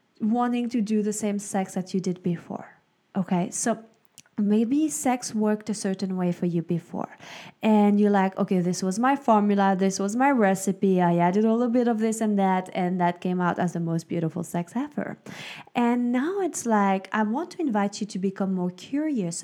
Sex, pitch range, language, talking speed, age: female, 190-235 Hz, English, 200 wpm, 20-39